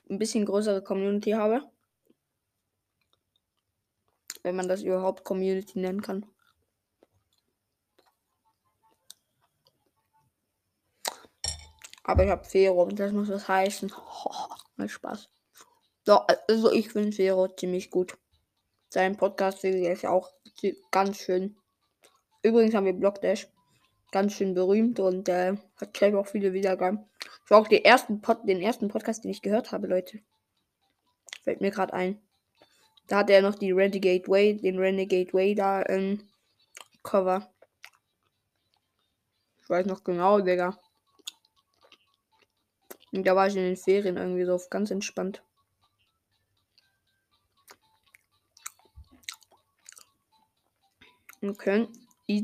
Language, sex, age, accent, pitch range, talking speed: German, female, 20-39, German, 185-210 Hz, 110 wpm